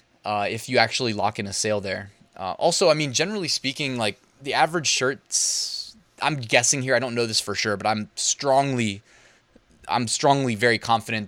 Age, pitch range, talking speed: 20-39, 110-155 Hz, 185 wpm